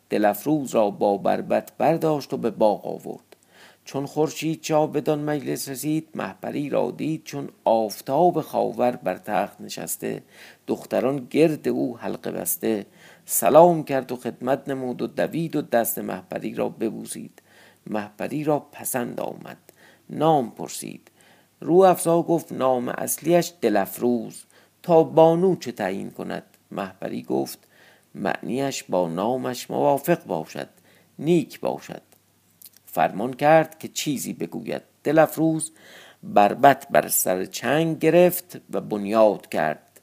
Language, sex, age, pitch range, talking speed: Persian, male, 50-69, 105-155 Hz, 125 wpm